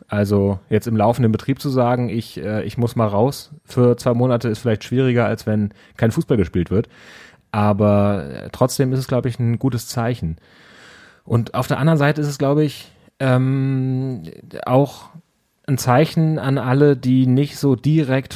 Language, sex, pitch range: German, male, 105-130 Hz